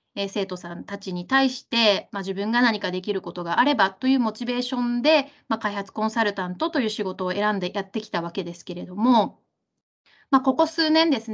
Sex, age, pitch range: female, 20-39, 195-270 Hz